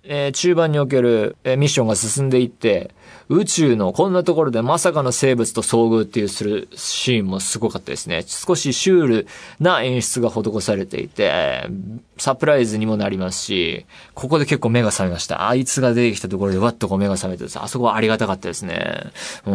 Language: Japanese